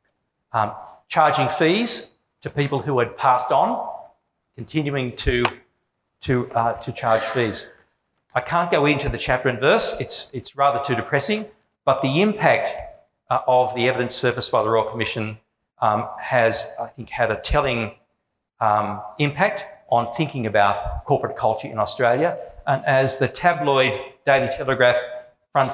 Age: 40-59